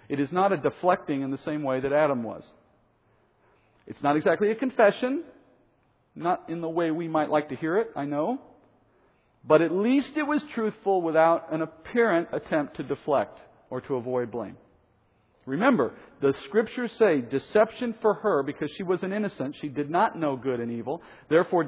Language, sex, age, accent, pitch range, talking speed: English, male, 50-69, American, 130-185 Hz, 180 wpm